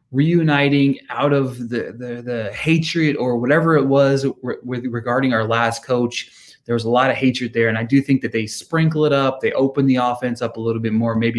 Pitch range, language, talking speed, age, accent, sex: 115-140 Hz, English, 225 wpm, 20-39, American, male